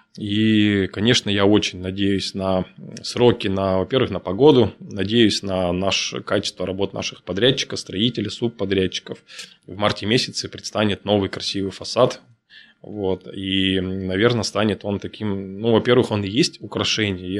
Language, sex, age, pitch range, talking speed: Russian, male, 20-39, 95-115 Hz, 125 wpm